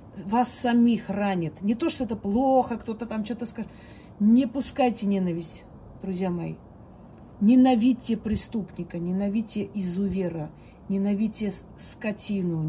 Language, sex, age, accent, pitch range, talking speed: Russian, female, 40-59, native, 170-215 Hz, 110 wpm